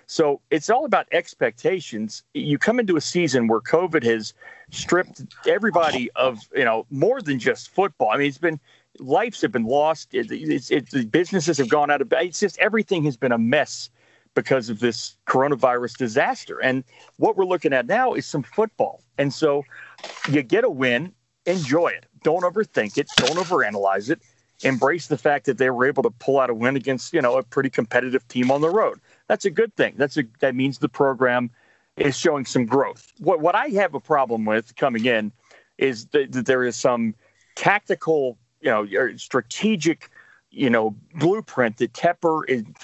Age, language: 40-59, English